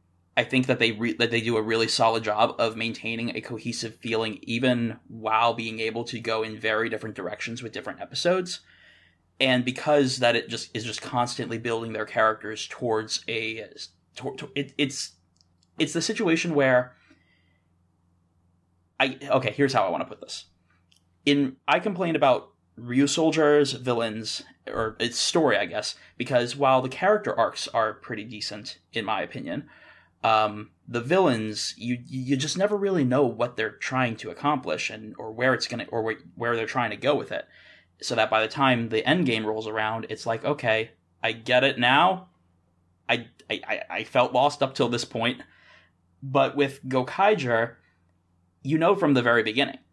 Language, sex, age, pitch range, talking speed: English, male, 20-39, 110-130 Hz, 175 wpm